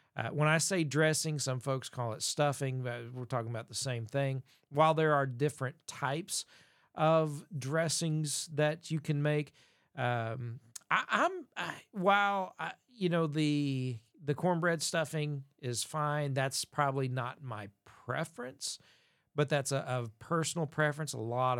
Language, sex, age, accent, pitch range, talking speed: English, male, 40-59, American, 120-150 Hz, 155 wpm